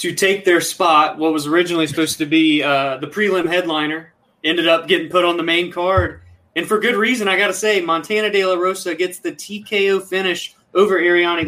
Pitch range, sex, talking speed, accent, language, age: 150-185 Hz, male, 210 wpm, American, English, 20-39